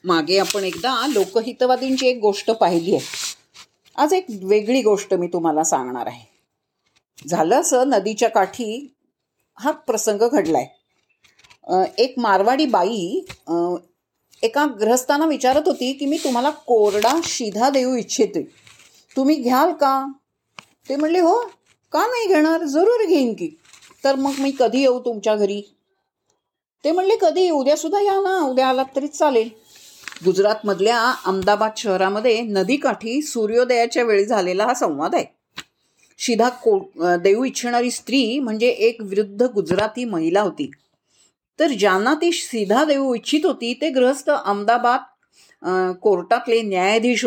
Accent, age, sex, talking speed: native, 50-69, female, 125 wpm